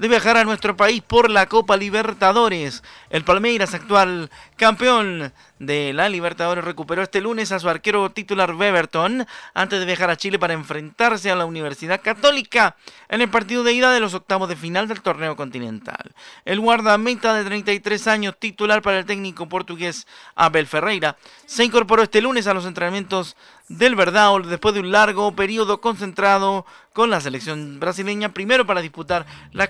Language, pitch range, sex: Spanish, 170-215 Hz, male